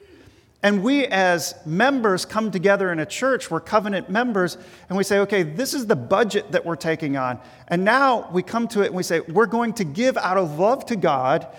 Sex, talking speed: male, 215 wpm